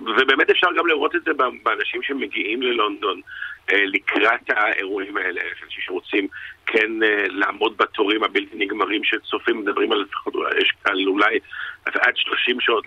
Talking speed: 120 wpm